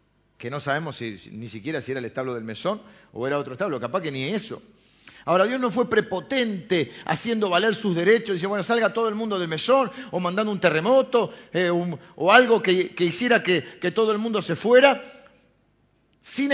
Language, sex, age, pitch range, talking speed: Spanish, male, 50-69, 175-245 Hz, 205 wpm